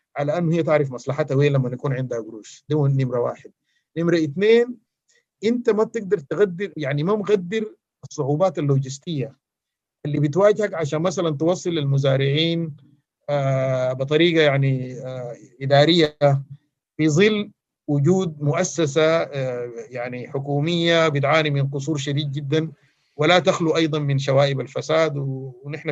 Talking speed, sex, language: 120 wpm, male, Arabic